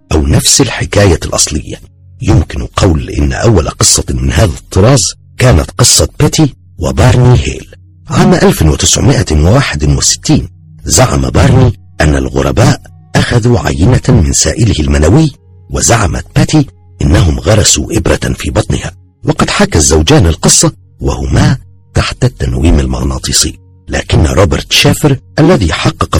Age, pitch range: 50-69, 80-120 Hz